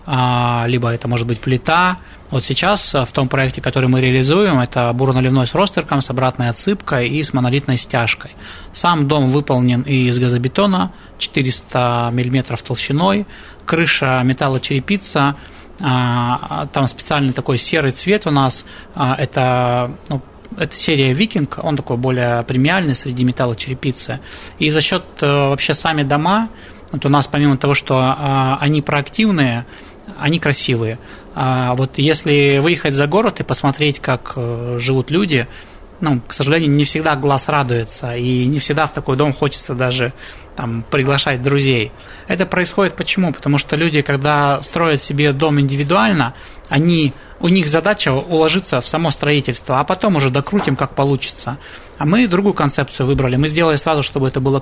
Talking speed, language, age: 145 wpm, Russian, 20-39